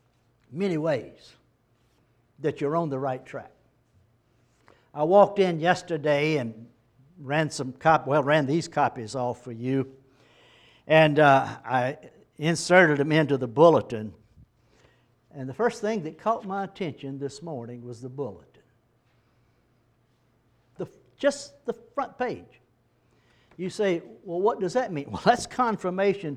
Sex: male